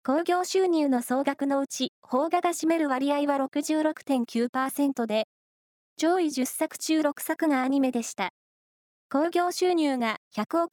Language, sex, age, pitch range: Japanese, female, 20-39, 250-320 Hz